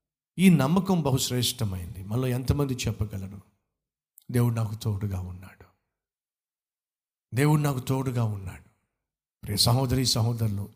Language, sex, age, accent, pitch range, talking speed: Telugu, male, 60-79, native, 105-160 Hz, 95 wpm